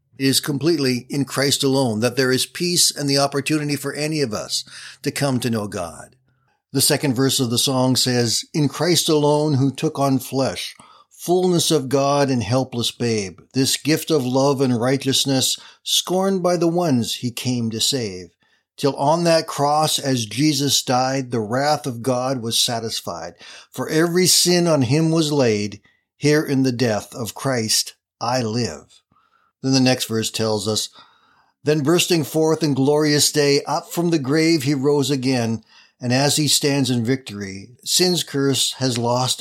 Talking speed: 170 wpm